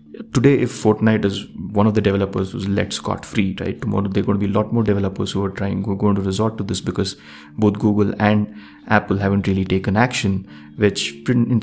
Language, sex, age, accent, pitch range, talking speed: English, male, 30-49, Indian, 95-105 Hz, 225 wpm